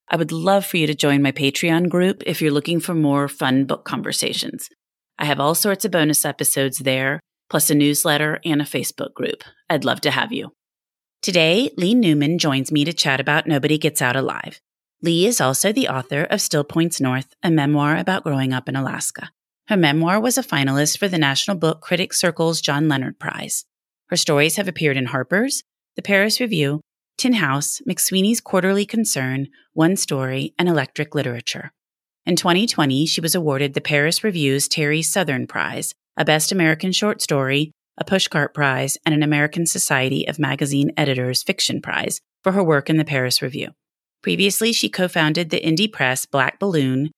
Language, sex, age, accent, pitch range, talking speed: English, female, 30-49, American, 140-180 Hz, 180 wpm